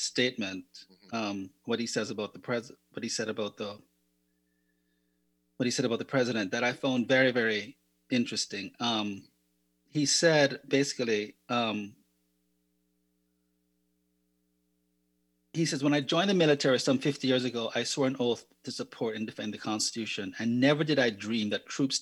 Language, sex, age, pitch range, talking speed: English, male, 30-49, 95-135 Hz, 160 wpm